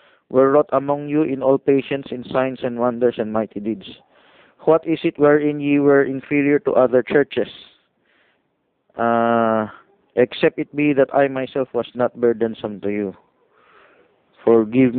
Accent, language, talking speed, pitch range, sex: native, Filipino, 150 wpm, 125-155 Hz, male